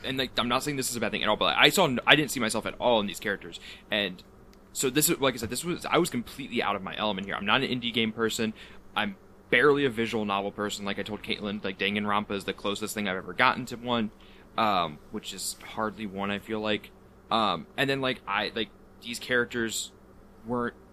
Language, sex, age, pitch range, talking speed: English, male, 20-39, 105-145 Hz, 245 wpm